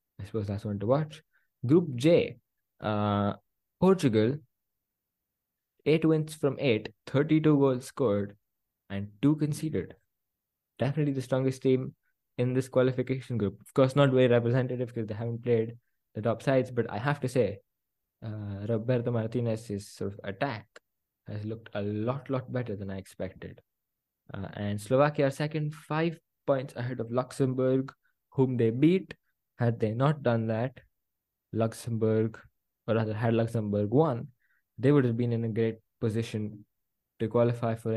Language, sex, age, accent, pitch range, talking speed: English, male, 20-39, Indian, 110-135 Hz, 150 wpm